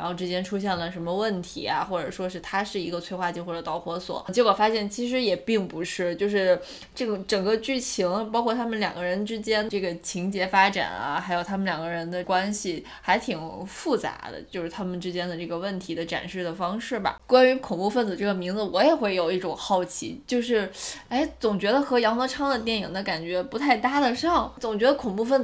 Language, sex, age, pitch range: Chinese, female, 20-39, 180-225 Hz